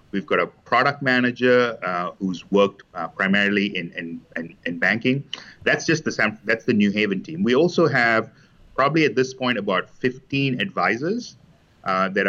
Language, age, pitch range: English, 30-49, 95-115 Hz